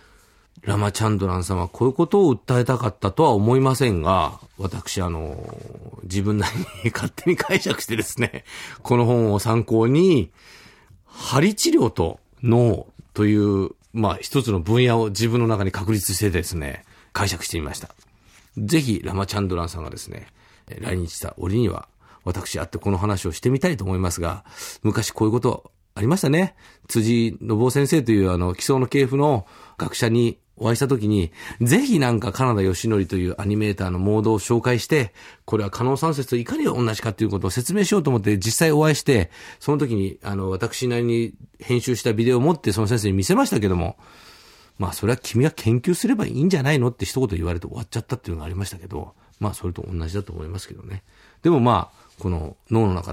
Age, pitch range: 40-59, 95-120 Hz